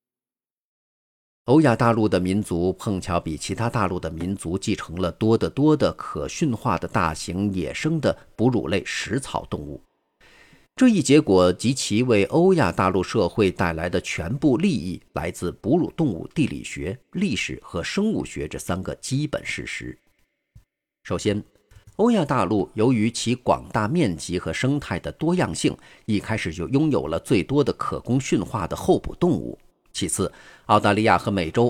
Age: 50-69